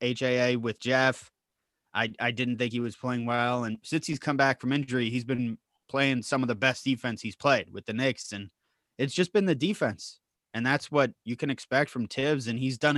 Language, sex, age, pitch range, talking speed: English, male, 20-39, 120-140 Hz, 220 wpm